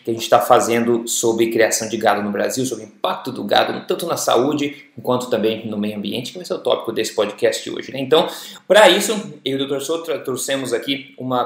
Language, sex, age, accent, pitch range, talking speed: Portuguese, male, 20-39, Brazilian, 120-150 Hz, 240 wpm